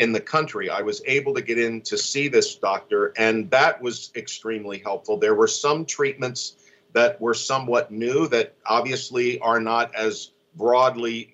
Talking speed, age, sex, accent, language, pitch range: 170 wpm, 50-69, male, American, English, 110-155 Hz